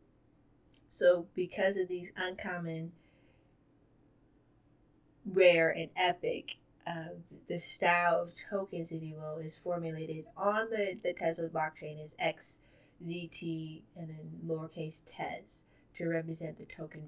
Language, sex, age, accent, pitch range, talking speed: English, female, 30-49, American, 150-170 Hz, 115 wpm